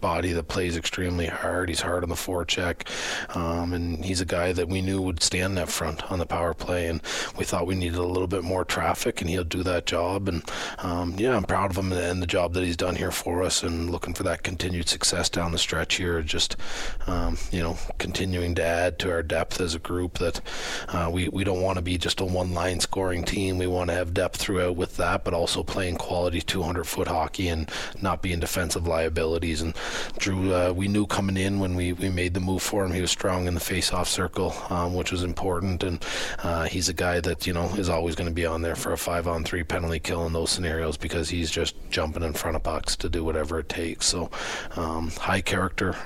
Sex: male